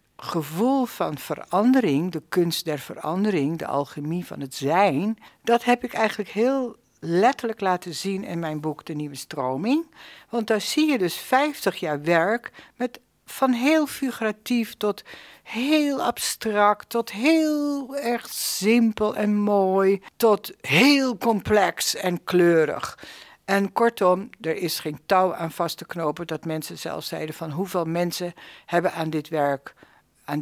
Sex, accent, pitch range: female, Dutch, 155-220 Hz